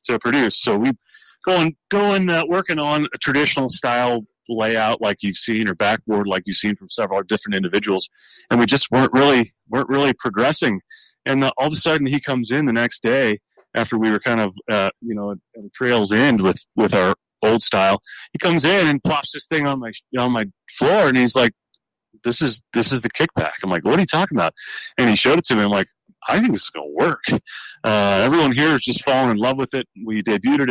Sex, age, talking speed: male, 30-49, 235 wpm